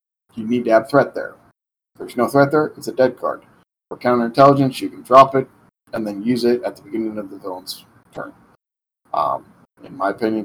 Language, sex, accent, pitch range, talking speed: English, male, American, 110-140 Hz, 205 wpm